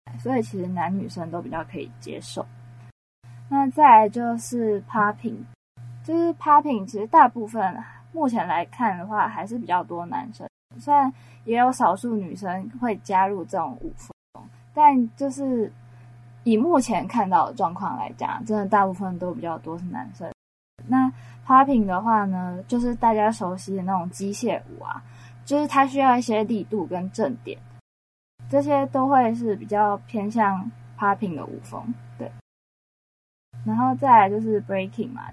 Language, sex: Chinese, female